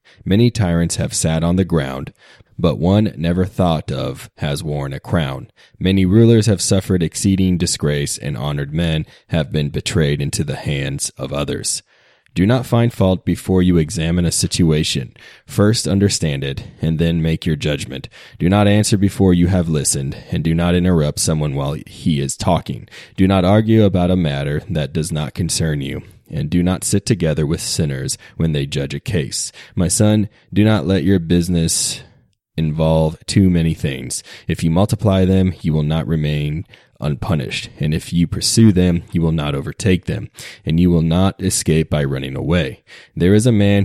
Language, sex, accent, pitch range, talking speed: English, male, American, 80-95 Hz, 180 wpm